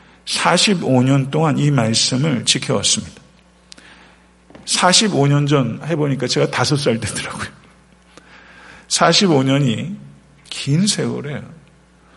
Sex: male